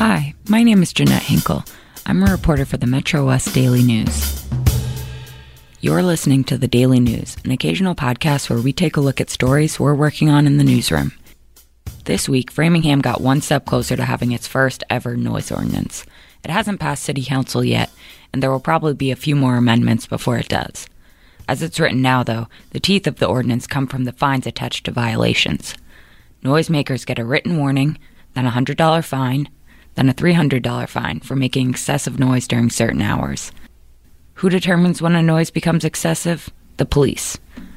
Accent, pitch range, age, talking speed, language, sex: American, 120-150 Hz, 20-39, 185 wpm, English, female